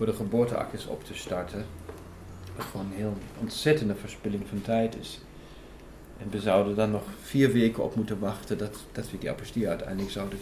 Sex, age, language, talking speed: male, 40-59, Dutch, 180 wpm